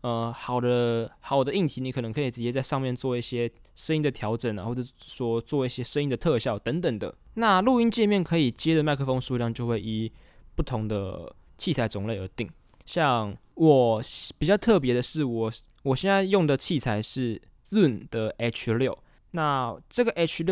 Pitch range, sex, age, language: 115-155 Hz, male, 20-39, Chinese